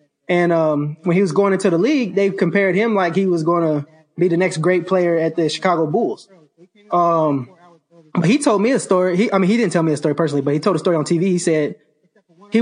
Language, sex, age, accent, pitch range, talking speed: English, male, 20-39, American, 160-205 Hz, 250 wpm